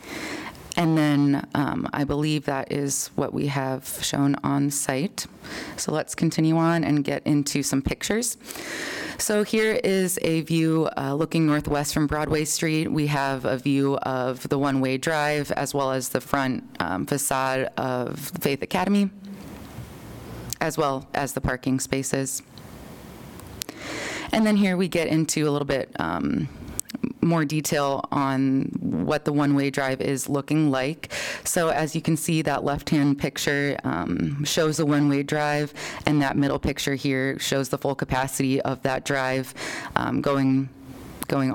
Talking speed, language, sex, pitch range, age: 150 wpm, English, female, 135-160 Hz, 20-39